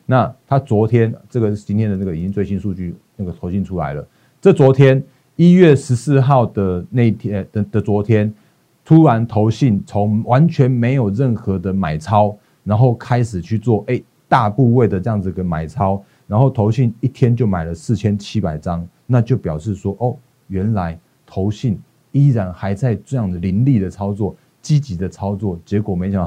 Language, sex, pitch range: Chinese, male, 95-125 Hz